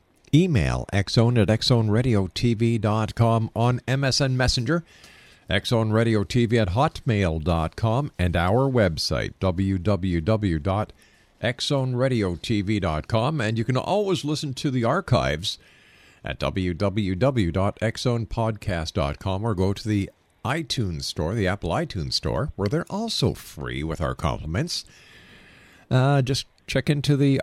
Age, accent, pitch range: 50-69, American, 95-135 Hz